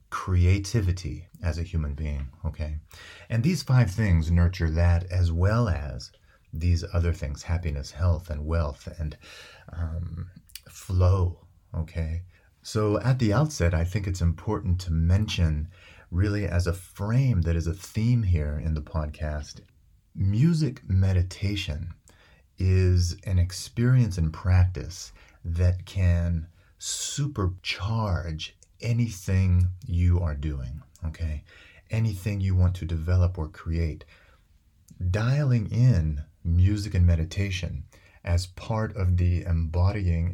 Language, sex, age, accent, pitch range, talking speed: English, male, 30-49, American, 85-95 Hz, 120 wpm